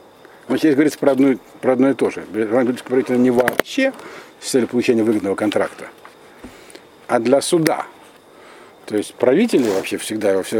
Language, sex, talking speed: Russian, male, 165 wpm